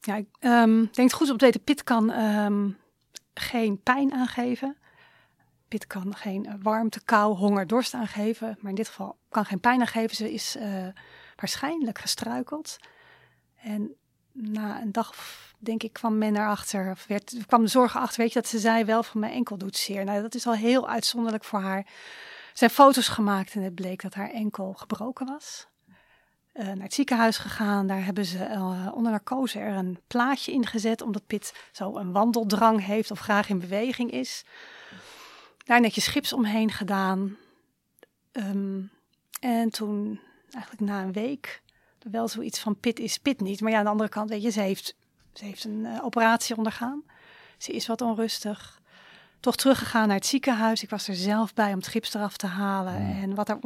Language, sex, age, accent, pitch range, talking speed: Dutch, female, 30-49, Dutch, 205-240 Hz, 185 wpm